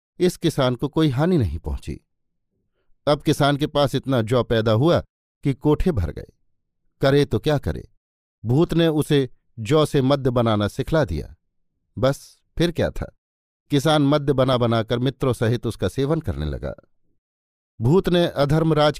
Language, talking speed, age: Hindi, 155 wpm, 50-69